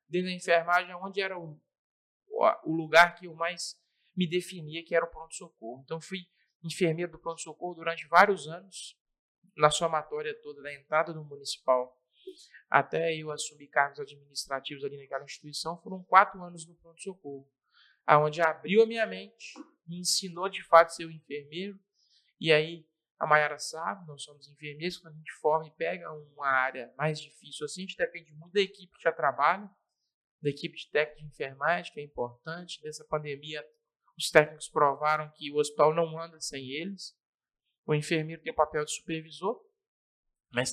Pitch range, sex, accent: 145-180 Hz, male, Brazilian